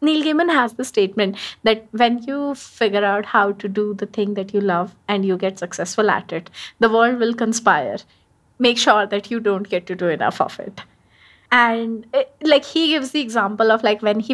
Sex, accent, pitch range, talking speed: female, Indian, 215-290 Hz, 210 wpm